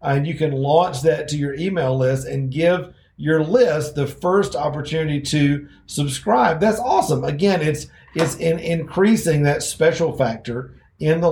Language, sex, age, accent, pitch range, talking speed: English, male, 40-59, American, 130-170 Hz, 155 wpm